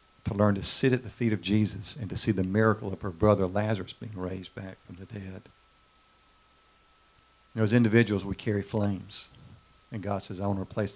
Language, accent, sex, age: English, American, male, 50-69